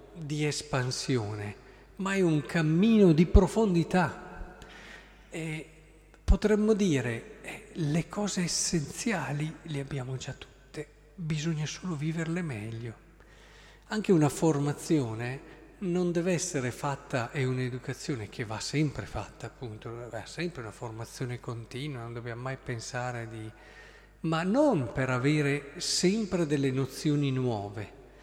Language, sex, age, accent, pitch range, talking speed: Italian, male, 50-69, native, 130-175 Hz, 115 wpm